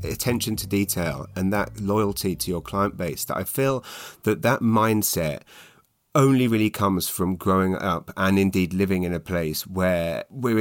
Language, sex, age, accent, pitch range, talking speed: English, male, 30-49, British, 90-105 Hz, 170 wpm